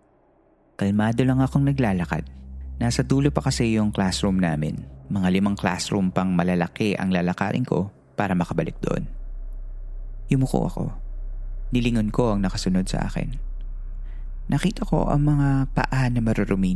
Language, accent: Filipino, native